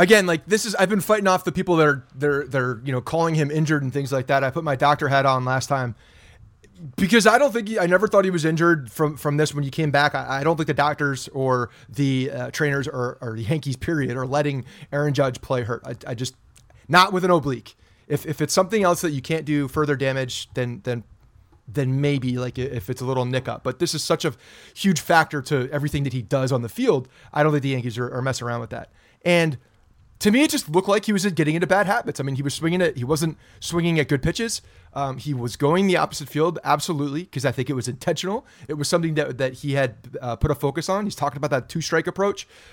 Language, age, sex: English, 30-49, male